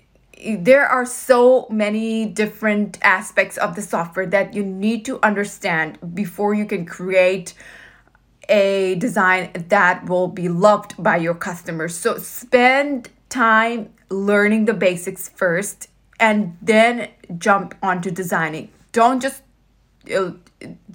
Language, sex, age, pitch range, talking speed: English, female, 20-39, 190-230 Hz, 115 wpm